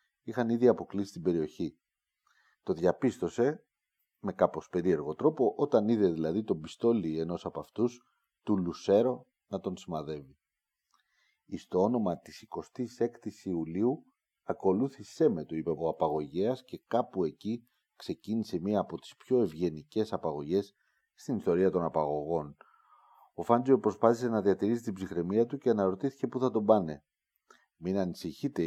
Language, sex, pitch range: Greek, male, 85-120 Hz